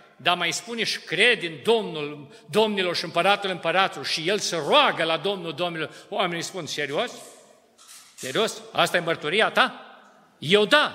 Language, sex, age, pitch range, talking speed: Romanian, male, 50-69, 170-255 Hz, 155 wpm